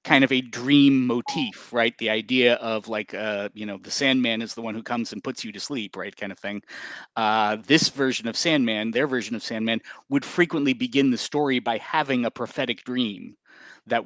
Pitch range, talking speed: 110-130 Hz, 210 wpm